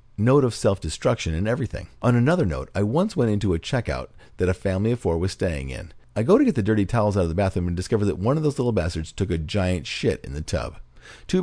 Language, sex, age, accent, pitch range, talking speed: English, male, 50-69, American, 85-125 Hz, 255 wpm